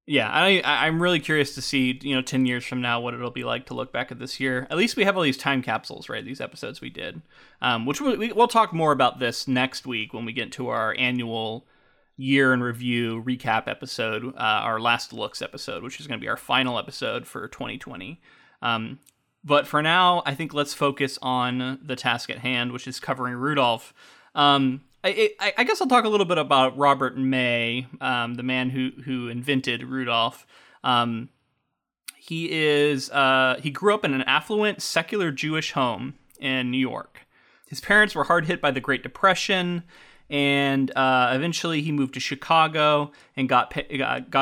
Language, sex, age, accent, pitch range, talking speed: English, male, 20-39, American, 125-150 Hz, 195 wpm